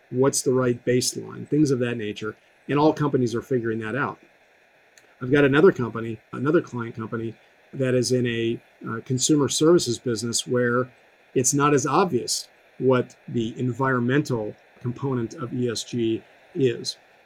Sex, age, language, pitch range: male, 40-59, English, 115-140 Hz